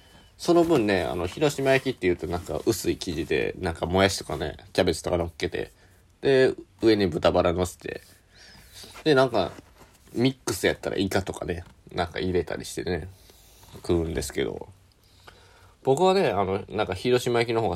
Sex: male